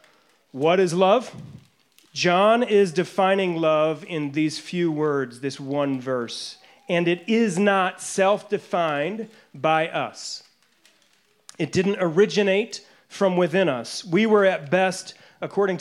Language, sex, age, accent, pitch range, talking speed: English, male, 30-49, American, 165-210 Hz, 120 wpm